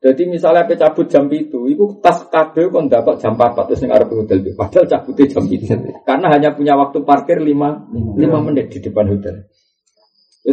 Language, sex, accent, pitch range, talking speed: Indonesian, male, native, 145-210 Hz, 180 wpm